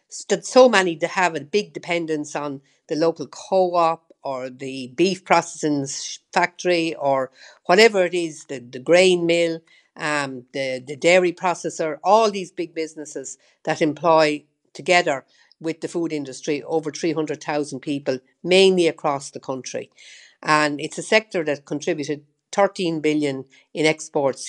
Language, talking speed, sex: English, 140 wpm, female